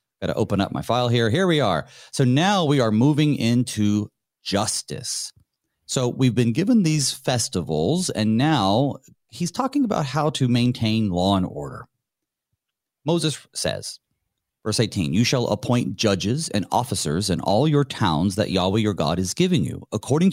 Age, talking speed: 30-49, 165 wpm